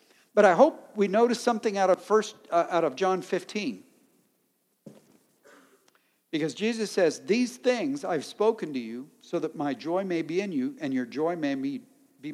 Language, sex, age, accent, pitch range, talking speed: English, male, 60-79, American, 165-250 Hz, 175 wpm